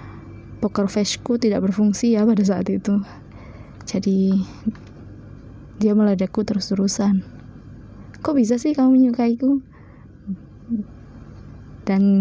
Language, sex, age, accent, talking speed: Indonesian, female, 20-39, native, 90 wpm